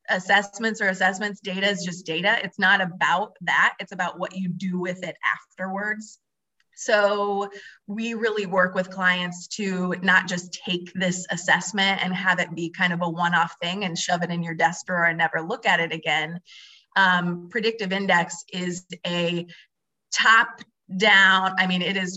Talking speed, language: 175 wpm, English